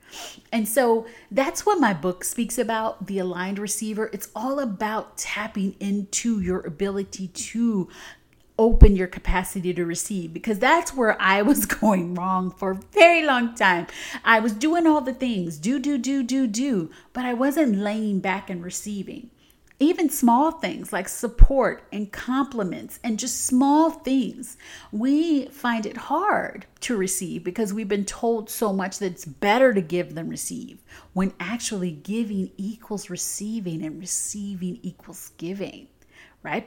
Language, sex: English, female